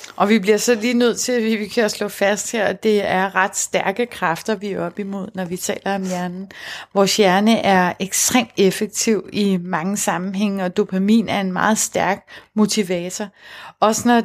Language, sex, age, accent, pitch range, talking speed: Danish, female, 30-49, native, 195-225 Hz, 190 wpm